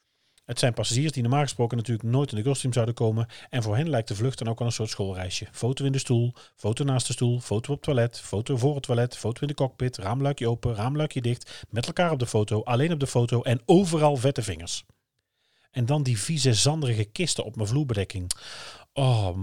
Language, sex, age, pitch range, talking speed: Dutch, male, 40-59, 110-145 Hz, 220 wpm